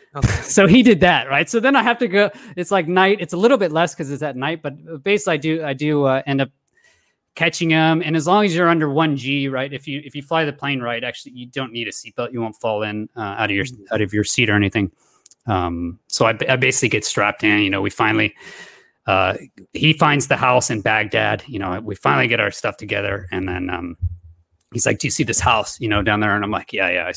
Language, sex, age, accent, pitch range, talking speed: English, male, 30-49, American, 105-140 Hz, 260 wpm